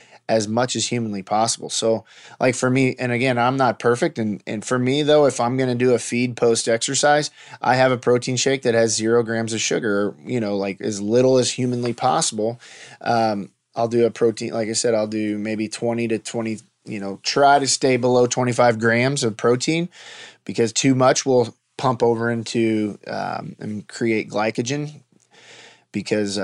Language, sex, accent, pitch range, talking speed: English, male, American, 110-130 Hz, 185 wpm